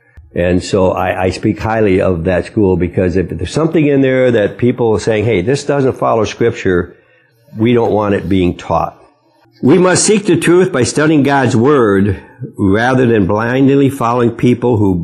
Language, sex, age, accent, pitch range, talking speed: English, male, 60-79, American, 95-125 Hz, 180 wpm